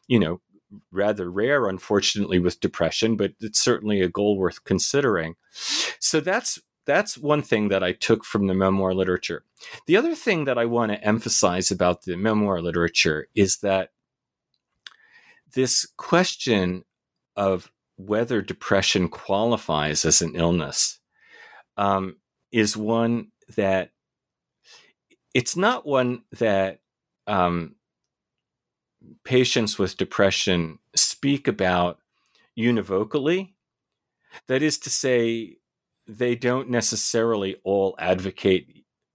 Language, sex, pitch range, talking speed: English, male, 95-120 Hz, 110 wpm